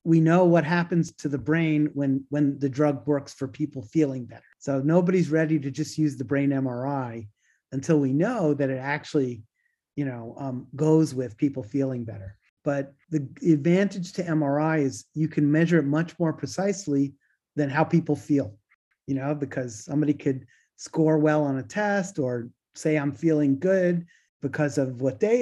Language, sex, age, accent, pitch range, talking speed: English, male, 30-49, American, 130-165 Hz, 175 wpm